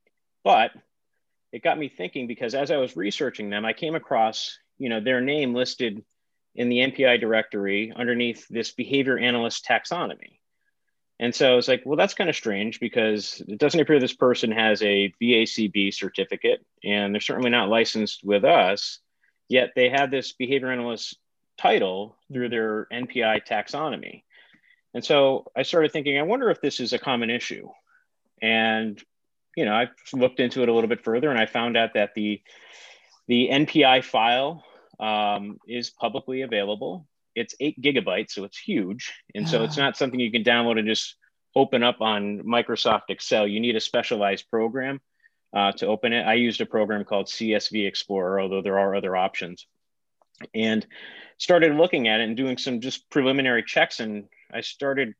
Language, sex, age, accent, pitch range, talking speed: English, male, 30-49, American, 110-135 Hz, 175 wpm